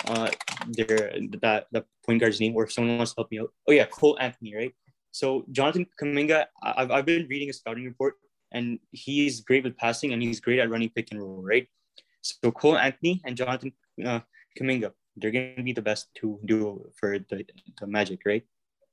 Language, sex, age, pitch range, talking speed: English, male, 20-39, 115-135 Hz, 200 wpm